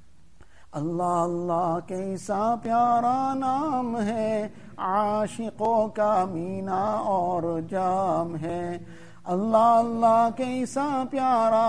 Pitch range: 185-230 Hz